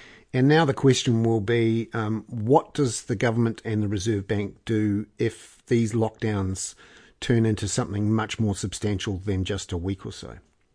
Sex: male